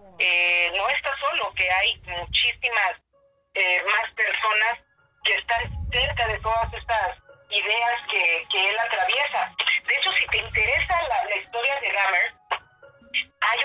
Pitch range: 195-240 Hz